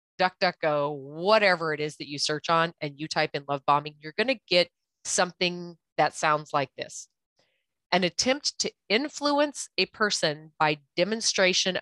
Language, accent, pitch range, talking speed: English, American, 150-190 Hz, 150 wpm